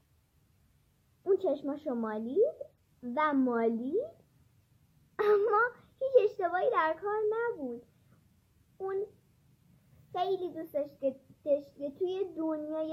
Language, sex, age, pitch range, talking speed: Persian, male, 20-39, 270-410 Hz, 80 wpm